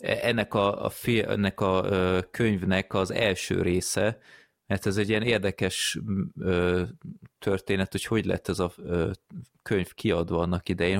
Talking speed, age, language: 155 wpm, 30-49, Hungarian